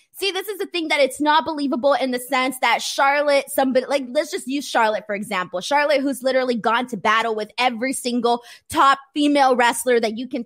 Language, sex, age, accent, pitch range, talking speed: English, female, 20-39, American, 240-310 Hz, 210 wpm